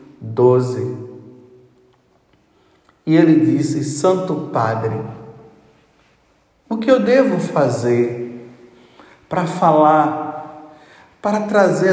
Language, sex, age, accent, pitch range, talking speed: Portuguese, male, 50-69, Brazilian, 125-160 Hz, 75 wpm